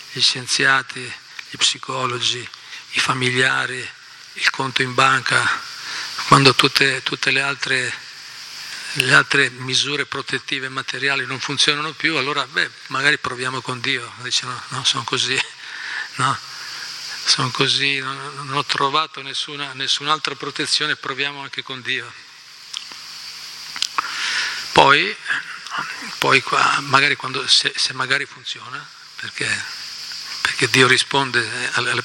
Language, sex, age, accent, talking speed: Italian, male, 40-59, native, 115 wpm